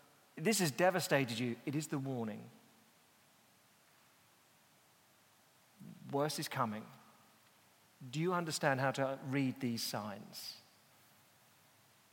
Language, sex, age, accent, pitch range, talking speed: English, male, 40-59, British, 135-160 Hz, 100 wpm